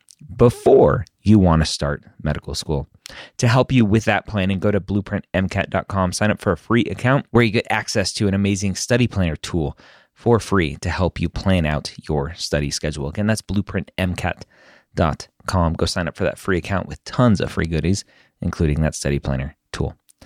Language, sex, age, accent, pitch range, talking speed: English, male, 30-49, American, 80-115 Hz, 185 wpm